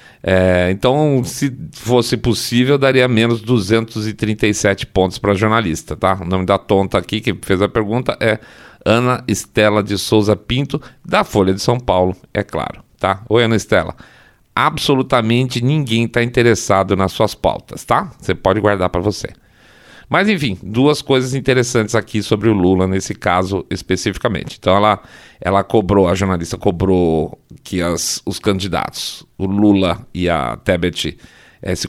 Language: Portuguese